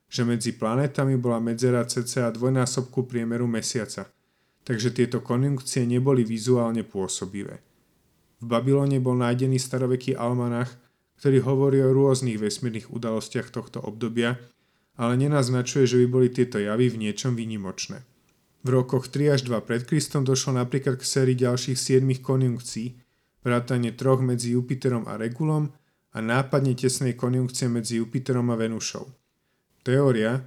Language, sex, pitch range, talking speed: Slovak, male, 120-135 Hz, 135 wpm